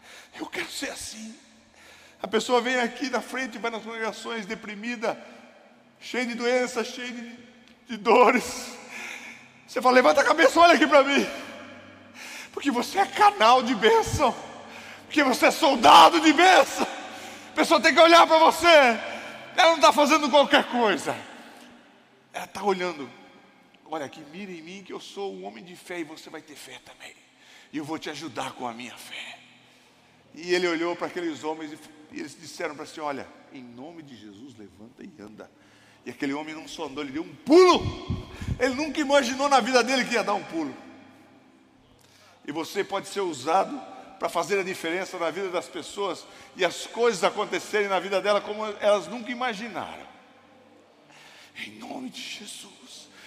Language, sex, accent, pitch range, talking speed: Portuguese, male, Brazilian, 195-285 Hz, 175 wpm